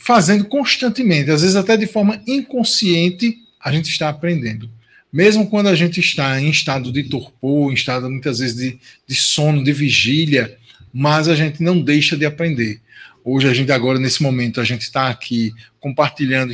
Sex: male